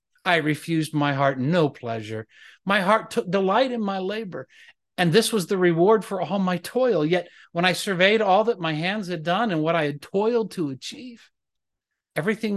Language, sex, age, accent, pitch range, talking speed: English, male, 50-69, American, 150-215 Hz, 190 wpm